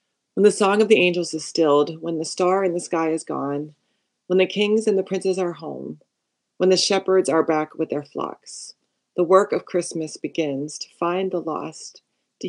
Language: English